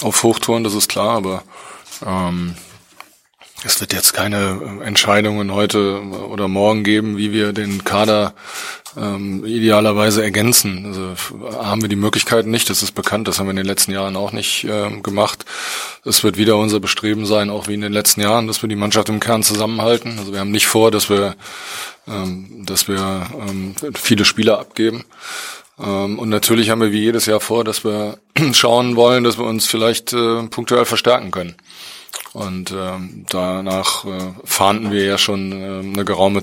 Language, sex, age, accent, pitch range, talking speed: German, male, 20-39, German, 95-110 Hz, 170 wpm